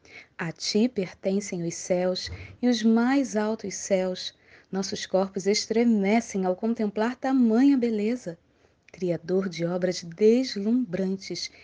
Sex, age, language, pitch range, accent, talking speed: female, 20-39, Portuguese, 180-235 Hz, Brazilian, 110 wpm